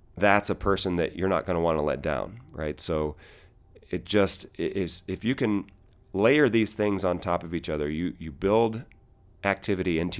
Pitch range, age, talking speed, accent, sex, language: 80-95 Hz, 30-49, 195 wpm, American, male, English